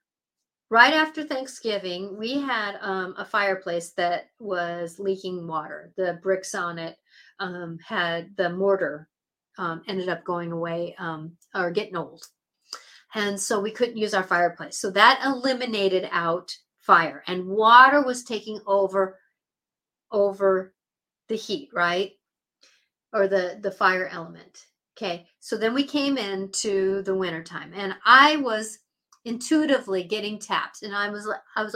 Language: English